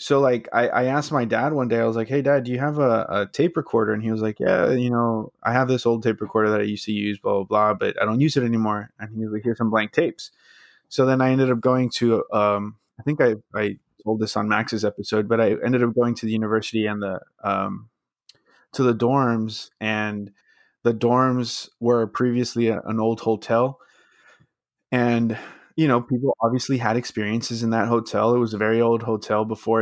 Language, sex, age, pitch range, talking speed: English, male, 20-39, 110-120 Hz, 225 wpm